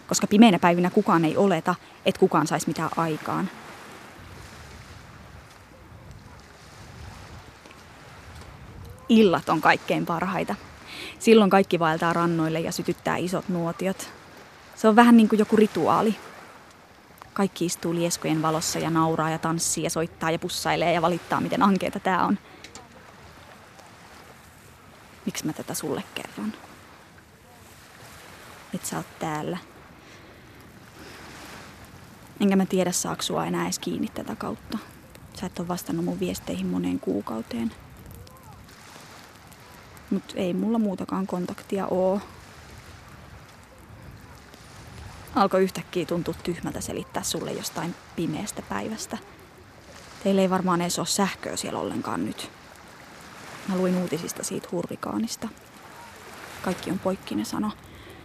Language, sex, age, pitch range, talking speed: Finnish, female, 20-39, 160-190 Hz, 110 wpm